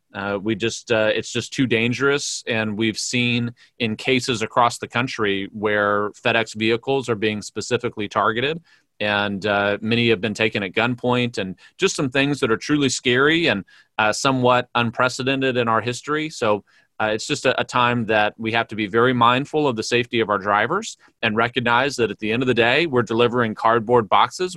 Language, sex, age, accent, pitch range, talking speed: English, male, 30-49, American, 105-125 Hz, 195 wpm